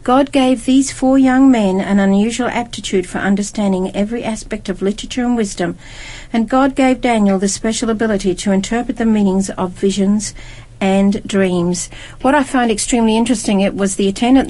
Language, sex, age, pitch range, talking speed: English, female, 50-69, 195-235 Hz, 170 wpm